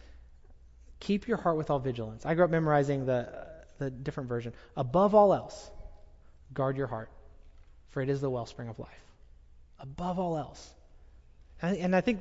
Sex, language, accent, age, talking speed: male, English, American, 30-49, 170 wpm